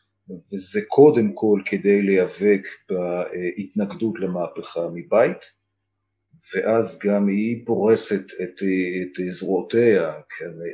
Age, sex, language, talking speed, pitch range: 40-59, male, Hebrew, 90 wpm, 95-140 Hz